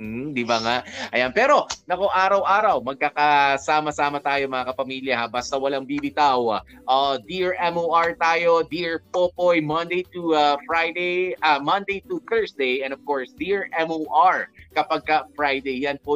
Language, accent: Filipino, native